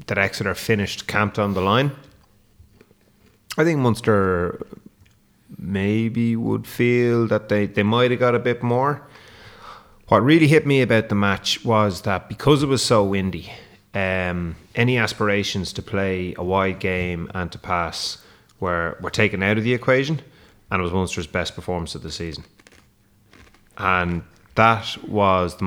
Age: 30-49